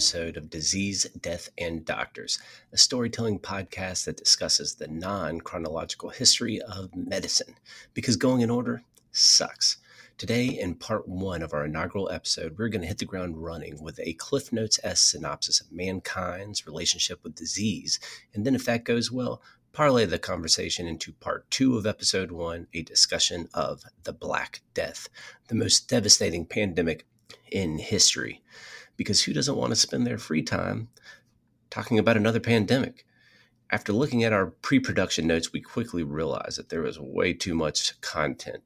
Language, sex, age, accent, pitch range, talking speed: English, male, 30-49, American, 85-115 Hz, 160 wpm